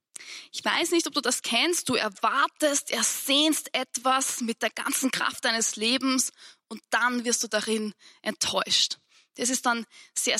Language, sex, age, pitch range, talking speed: German, female, 20-39, 220-270 Hz, 155 wpm